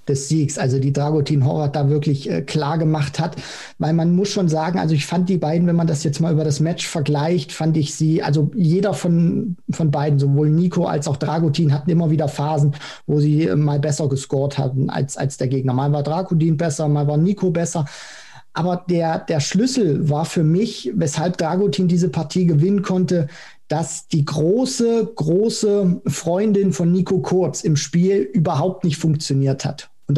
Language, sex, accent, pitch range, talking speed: German, male, German, 150-180 Hz, 185 wpm